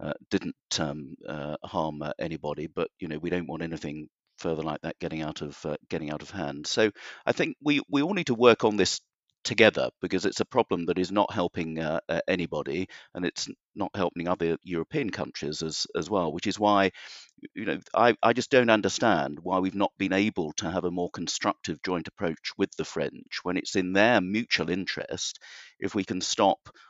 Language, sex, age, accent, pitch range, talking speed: English, male, 50-69, British, 80-100 Hz, 210 wpm